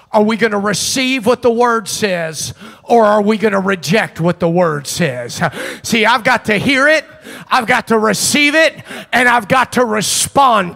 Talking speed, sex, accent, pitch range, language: 195 wpm, male, American, 165-240 Hz, English